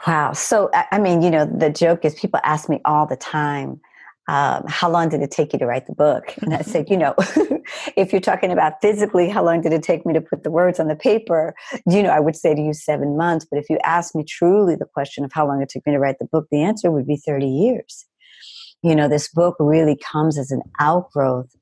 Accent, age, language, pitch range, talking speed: American, 50-69, English, 140-155 Hz, 255 wpm